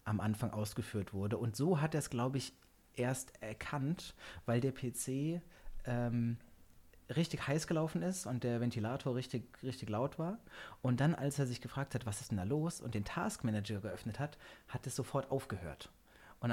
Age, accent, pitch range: 30-49, German, 110-140 Hz